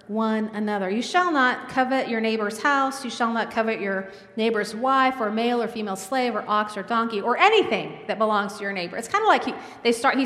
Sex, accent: female, American